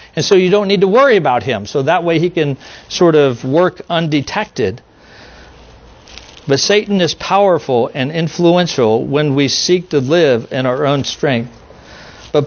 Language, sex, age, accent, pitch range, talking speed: English, male, 50-69, American, 125-170 Hz, 165 wpm